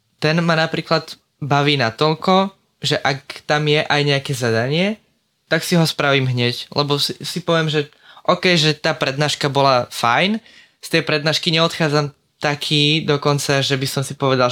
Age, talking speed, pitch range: 20-39, 165 wpm, 130-160 Hz